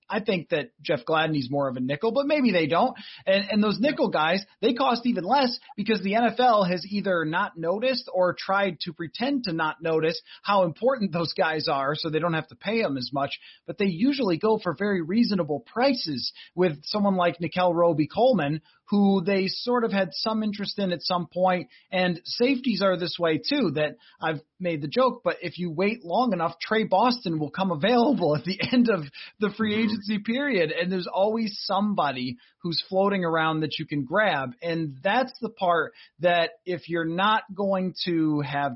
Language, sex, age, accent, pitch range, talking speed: English, male, 30-49, American, 155-210 Hz, 195 wpm